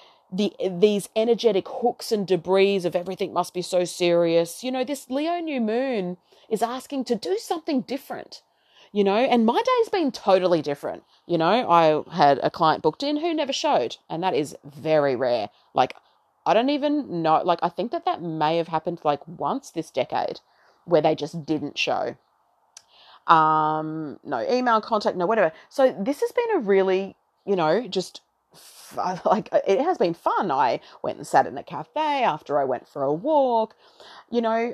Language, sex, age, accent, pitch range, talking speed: English, female, 30-49, Australian, 170-255 Hz, 185 wpm